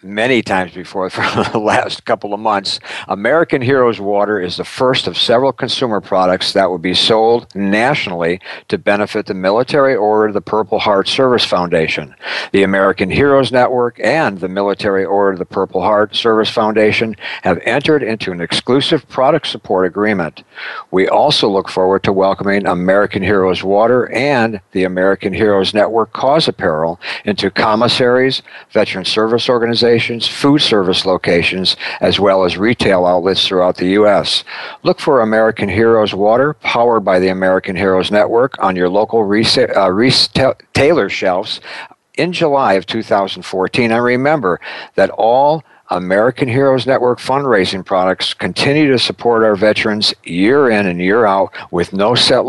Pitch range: 95-120 Hz